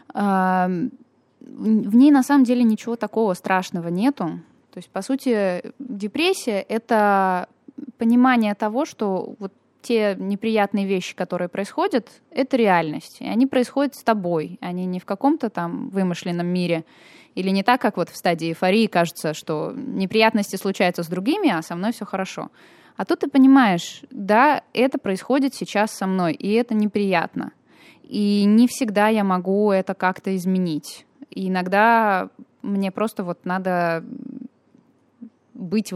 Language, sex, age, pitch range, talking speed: Russian, female, 20-39, 185-255 Hz, 145 wpm